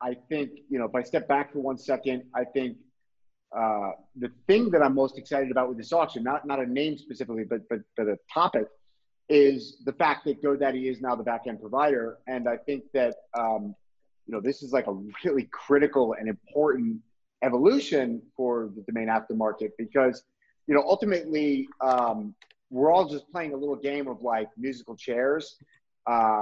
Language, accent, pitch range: English, American, 120-150 Hz